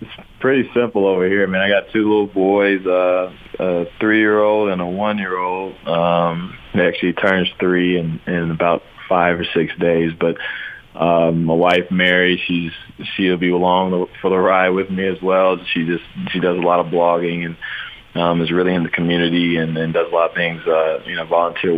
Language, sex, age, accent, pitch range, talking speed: English, male, 20-39, American, 85-95 Hz, 200 wpm